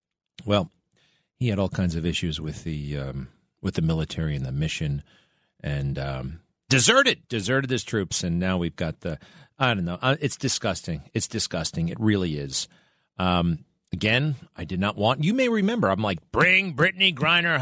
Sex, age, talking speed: male, 40-59, 175 wpm